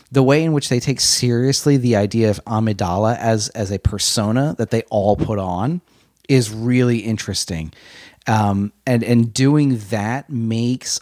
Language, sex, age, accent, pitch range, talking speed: English, male, 30-49, American, 105-125 Hz, 160 wpm